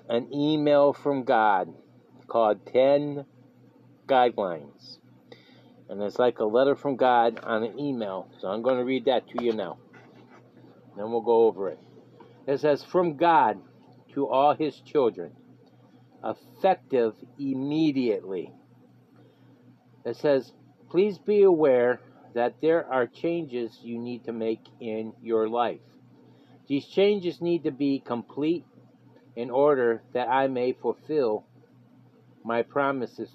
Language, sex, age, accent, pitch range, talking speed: English, male, 50-69, American, 115-145 Hz, 130 wpm